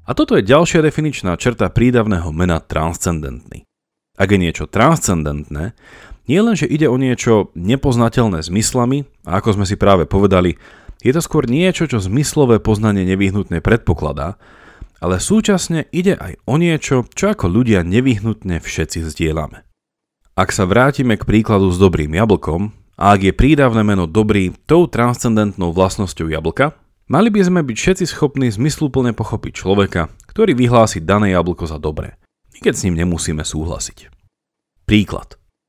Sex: male